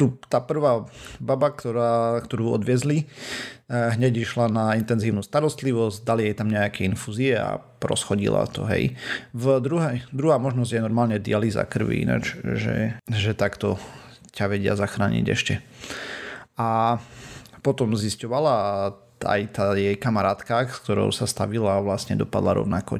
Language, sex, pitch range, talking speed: Slovak, male, 105-130 Hz, 135 wpm